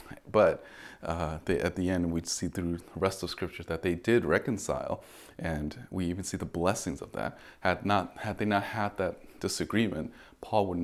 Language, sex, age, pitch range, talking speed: English, male, 30-49, 85-100 Hz, 195 wpm